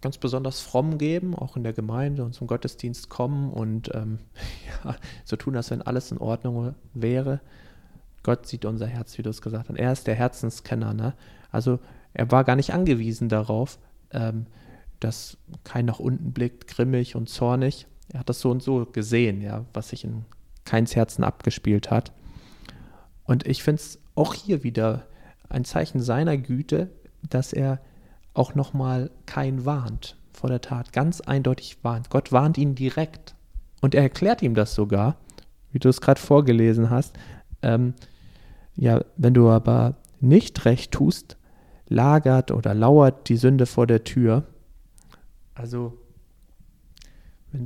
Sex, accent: male, German